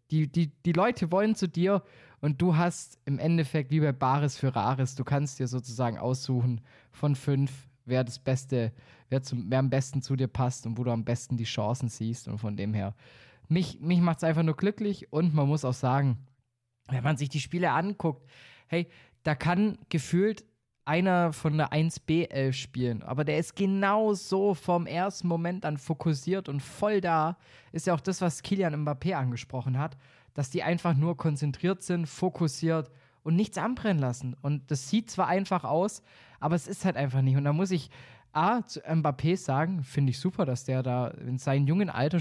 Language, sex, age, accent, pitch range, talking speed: German, male, 20-39, German, 130-170 Hz, 190 wpm